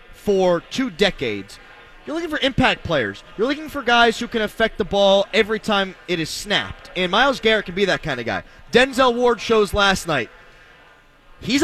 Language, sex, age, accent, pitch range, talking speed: English, male, 30-49, American, 195-235 Hz, 190 wpm